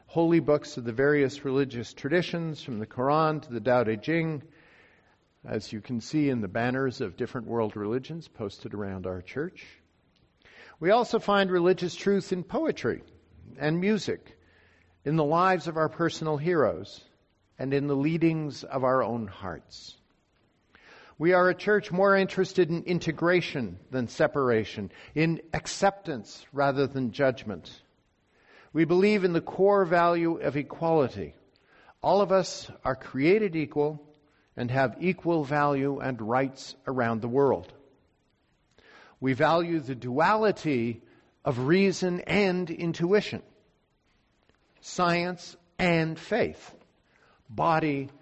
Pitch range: 130-175 Hz